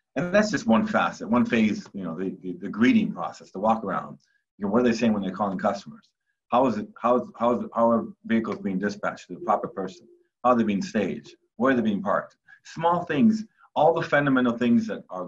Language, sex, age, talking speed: English, male, 30-49, 245 wpm